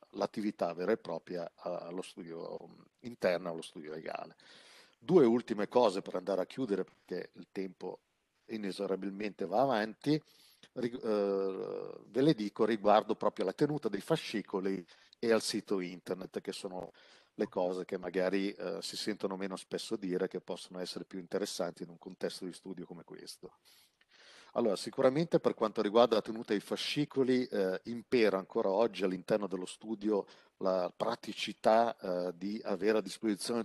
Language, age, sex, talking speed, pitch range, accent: Italian, 50-69, male, 150 wpm, 95-115 Hz, native